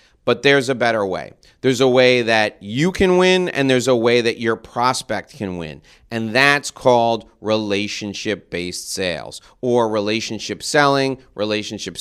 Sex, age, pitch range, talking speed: male, 40-59, 110-140 Hz, 150 wpm